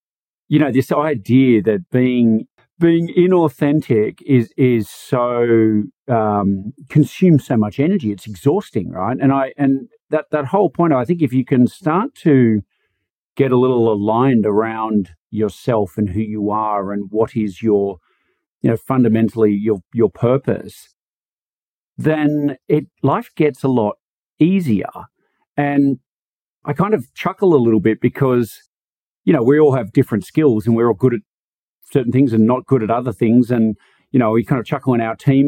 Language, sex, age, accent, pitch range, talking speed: English, male, 50-69, Australian, 115-155 Hz, 165 wpm